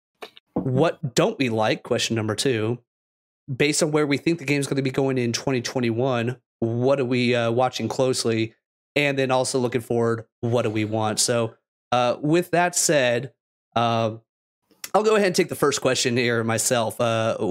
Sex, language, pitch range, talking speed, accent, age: male, English, 115-135 Hz, 180 wpm, American, 30-49